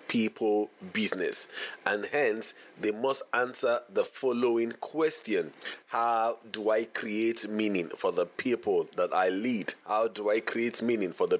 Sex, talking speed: male, 145 wpm